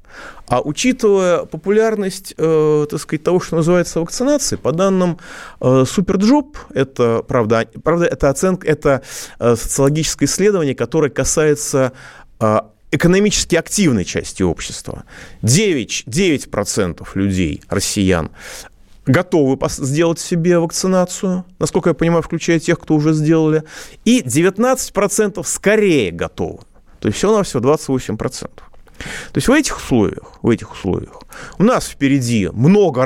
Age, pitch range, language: 30-49, 120-170 Hz, Russian